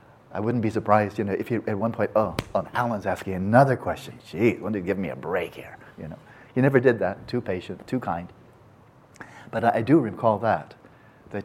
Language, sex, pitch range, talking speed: English, male, 100-130 Hz, 215 wpm